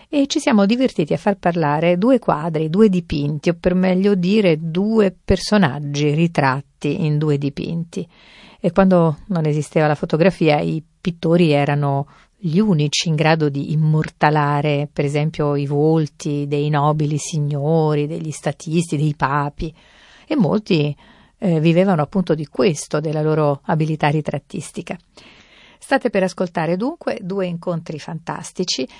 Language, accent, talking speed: Italian, native, 135 wpm